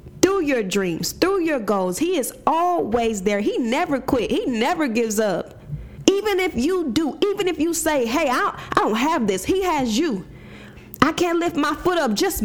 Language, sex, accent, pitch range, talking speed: English, female, American, 235-320 Hz, 195 wpm